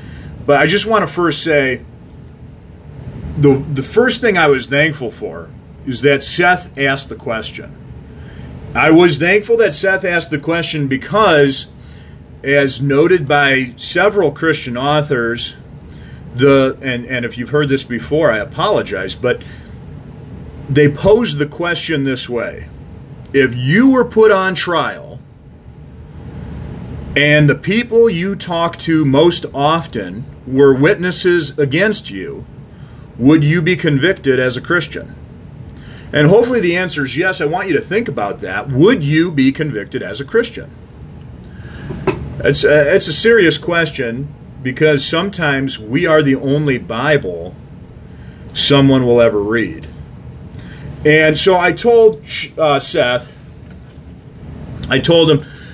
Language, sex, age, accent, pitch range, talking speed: English, male, 40-59, American, 135-175 Hz, 130 wpm